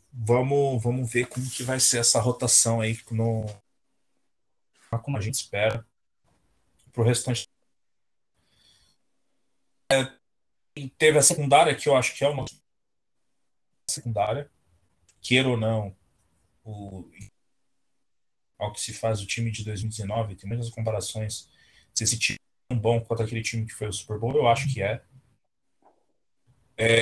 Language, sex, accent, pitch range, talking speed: Portuguese, male, Brazilian, 105-125 Hz, 140 wpm